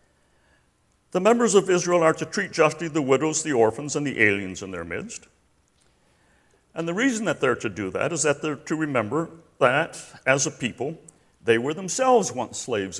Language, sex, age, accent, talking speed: English, male, 60-79, American, 185 wpm